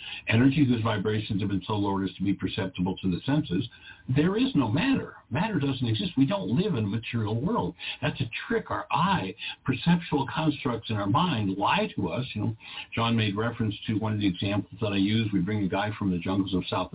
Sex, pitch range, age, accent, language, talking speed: male, 100-140 Hz, 60-79, American, English, 225 wpm